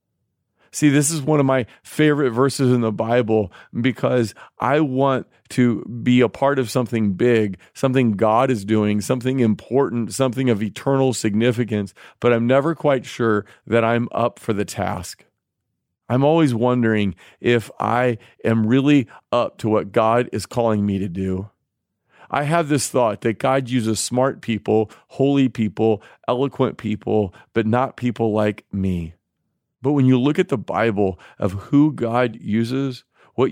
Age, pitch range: 40-59, 110-135 Hz